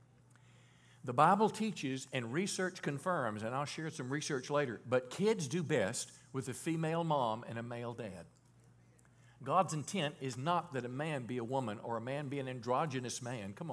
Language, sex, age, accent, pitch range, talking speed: English, male, 50-69, American, 125-170 Hz, 185 wpm